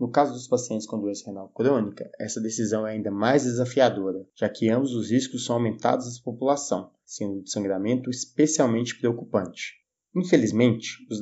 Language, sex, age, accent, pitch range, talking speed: Portuguese, male, 20-39, Brazilian, 110-130 Hz, 160 wpm